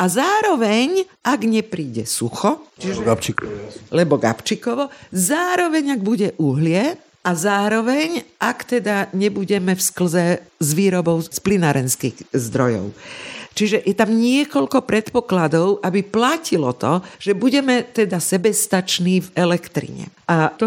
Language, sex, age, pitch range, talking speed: Slovak, female, 50-69, 165-225 Hz, 110 wpm